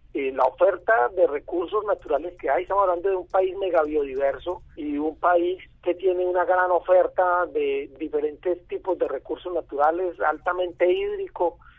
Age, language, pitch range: 40-59, Spanish, 160-240 Hz